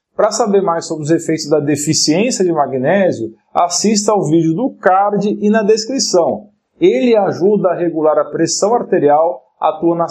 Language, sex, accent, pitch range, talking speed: Portuguese, male, Brazilian, 160-200 Hz, 160 wpm